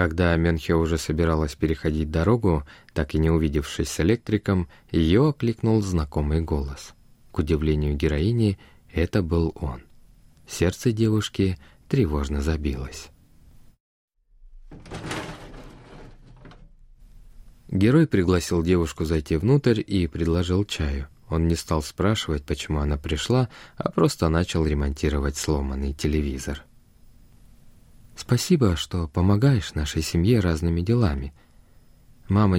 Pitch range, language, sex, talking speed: 75-95 Hz, Russian, male, 100 wpm